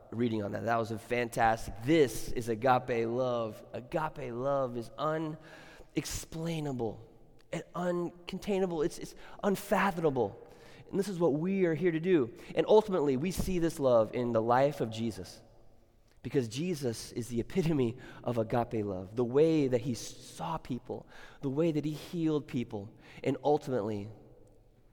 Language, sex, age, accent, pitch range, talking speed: English, male, 20-39, American, 115-160 Hz, 150 wpm